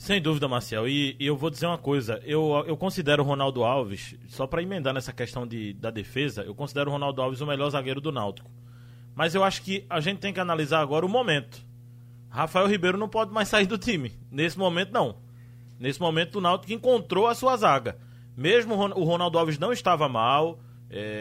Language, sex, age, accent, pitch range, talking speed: Portuguese, male, 20-39, Brazilian, 125-190 Hz, 205 wpm